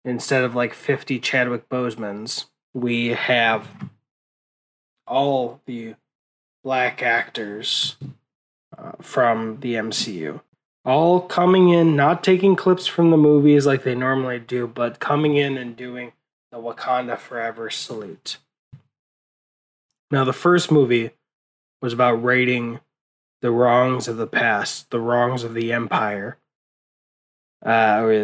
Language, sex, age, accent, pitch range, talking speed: English, male, 20-39, American, 115-135 Hz, 120 wpm